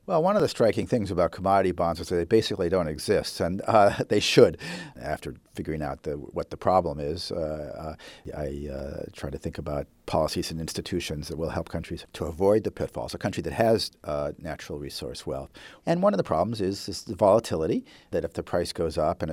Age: 50-69